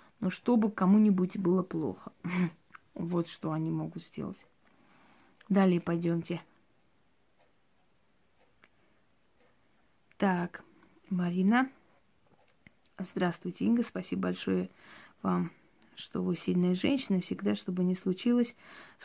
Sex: female